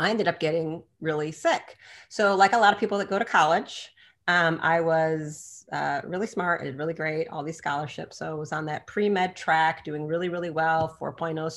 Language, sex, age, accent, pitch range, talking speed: English, female, 30-49, American, 145-170 Hz, 205 wpm